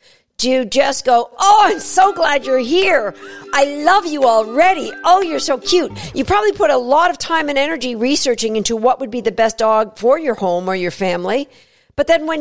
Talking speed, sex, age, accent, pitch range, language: 210 wpm, female, 50-69, American, 225-310 Hz, English